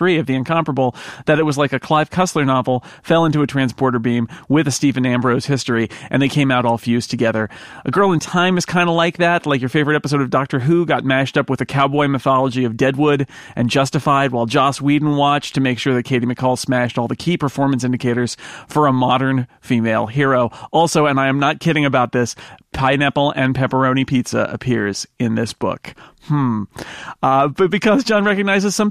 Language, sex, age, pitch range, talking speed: English, male, 40-59, 130-165 Hz, 205 wpm